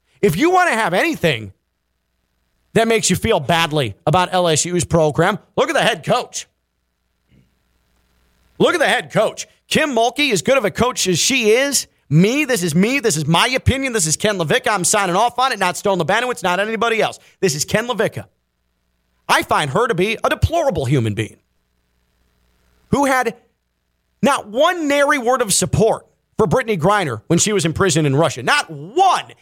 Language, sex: English, male